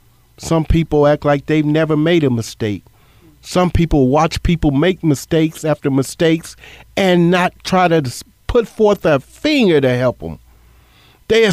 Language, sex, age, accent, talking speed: English, male, 50-69, American, 150 wpm